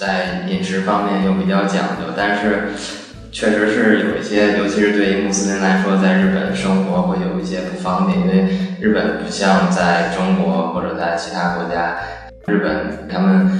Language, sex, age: Chinese, male, 20-39